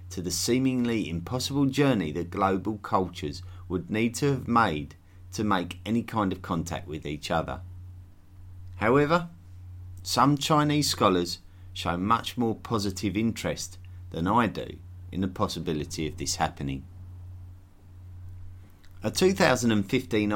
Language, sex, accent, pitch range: English, male, British, 90-105 Hz